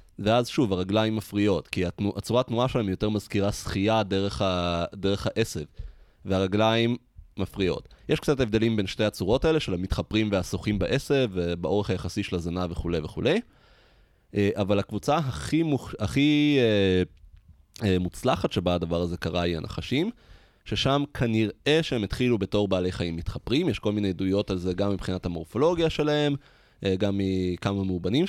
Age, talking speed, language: 20-39, 145 wpm, Hebrew